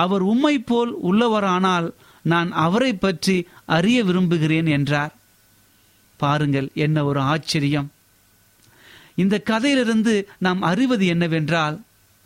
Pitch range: 145-190 Hz